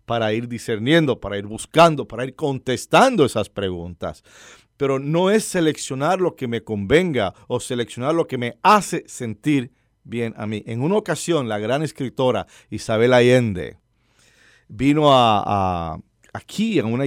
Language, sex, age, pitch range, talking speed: English, male, 50-69, 110-155 Hz, 150 wpm